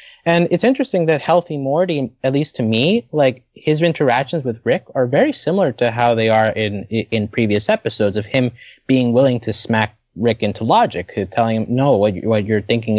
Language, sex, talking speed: English, male, 195 wpm